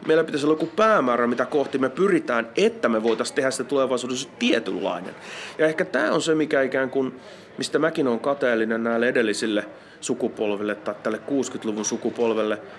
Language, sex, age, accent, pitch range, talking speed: Finnish, male, 30-49, native, 115-150 Hz, 165 wpm